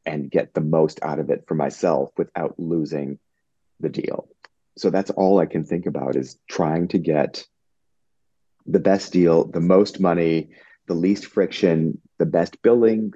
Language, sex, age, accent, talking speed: English, male, 30-49, American, 165 wpm